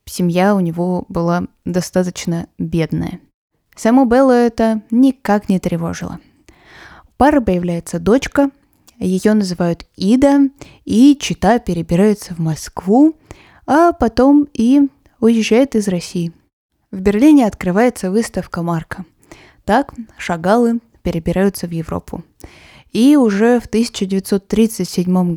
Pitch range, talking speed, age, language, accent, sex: 180-230 Hz, 105 wpm, 20-39, Russian, native, female